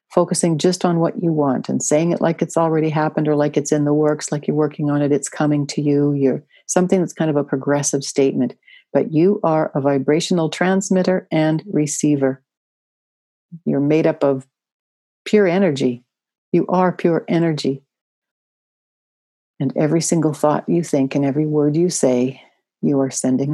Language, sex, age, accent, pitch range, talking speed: English, female, 60-79, American, 135-175 Hz, 175 wpm